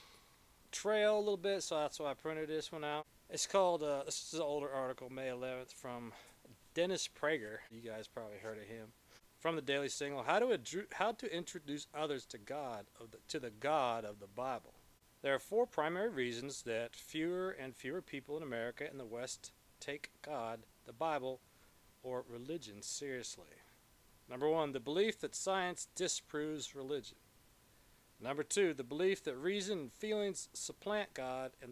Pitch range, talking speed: 125-165 Hz, 170 wpm